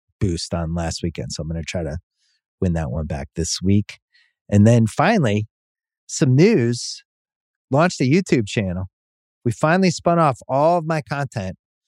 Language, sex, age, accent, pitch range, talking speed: English, male, 30-49, American, 95-130 Hz, 165 wpm